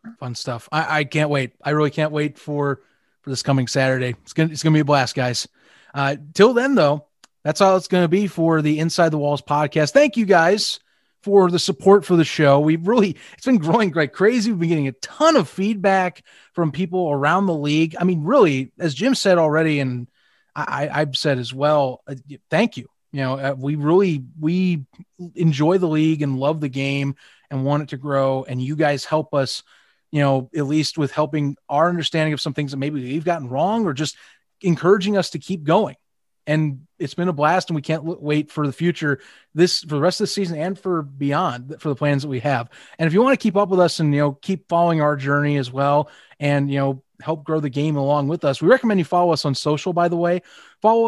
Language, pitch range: English, 145-175 Hz